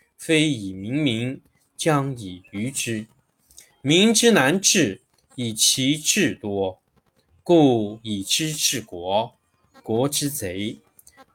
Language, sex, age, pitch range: Chinese, male, 20-39, 115-160 Hz